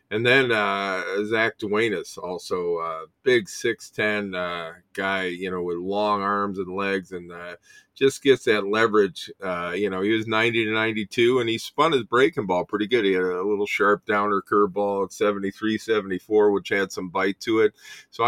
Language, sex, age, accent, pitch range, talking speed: English, male, 50-69, American, 95-115 Hz, 190 wpm